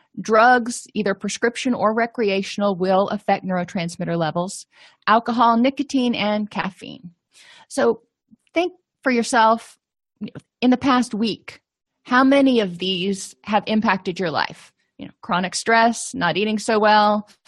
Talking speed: 125 wpm